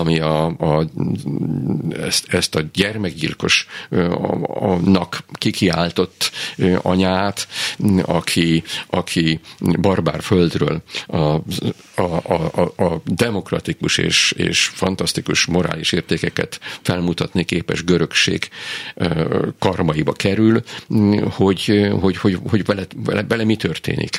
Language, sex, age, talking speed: Hungarian, male, 50-69, 90 wpm